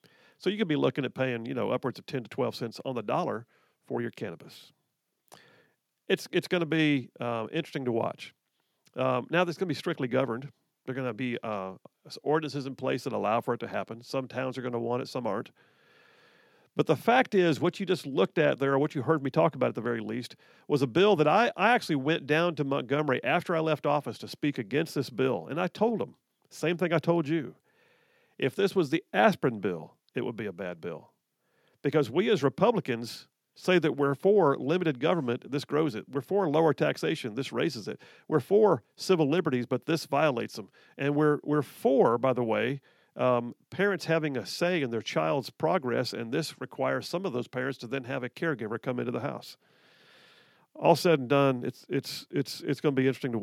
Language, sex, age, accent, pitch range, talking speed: English, male, 50-69, American, 125-170 Hz, 220 wpm